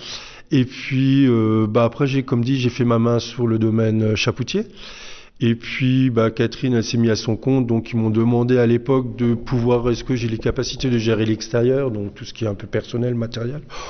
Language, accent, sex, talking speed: French, French, male, 220 wpm